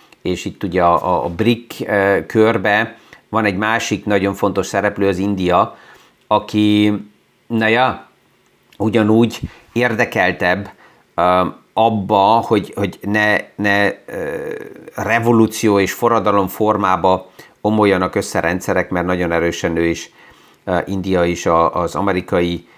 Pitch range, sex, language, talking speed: 90-110 Hz, male, Hungarian, 125 wpm